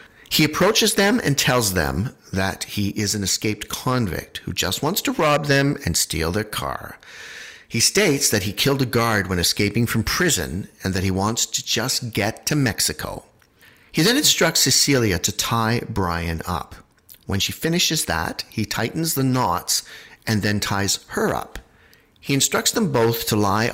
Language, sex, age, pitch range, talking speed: English, male, 50-69, 95-130 Hz, 175 wpm